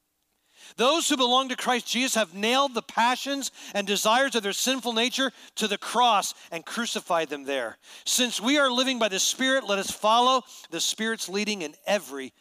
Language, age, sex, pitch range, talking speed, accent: English, 40-59, male, 140-220 Hz, 185 wpm, American